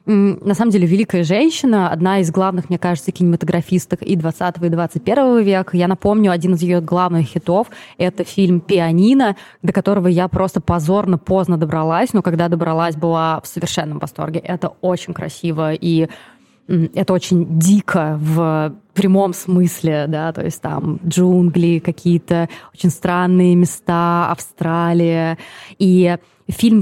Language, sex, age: Russian, female, 20-39